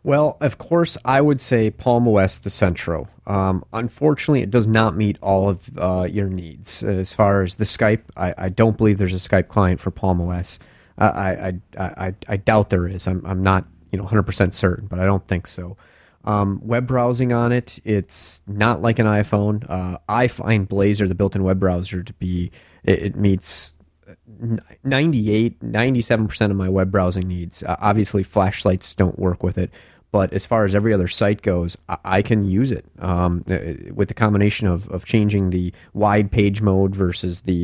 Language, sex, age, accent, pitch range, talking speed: English, male, 30-49, American, 90-105 Hz, 190 wpm